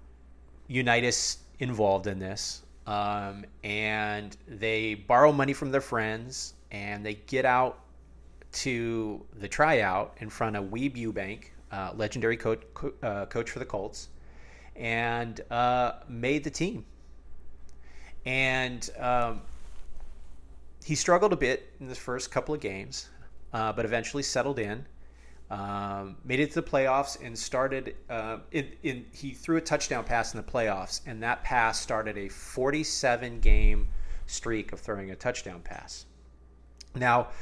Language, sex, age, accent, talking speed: English, male, 30-49, American, 140 wpm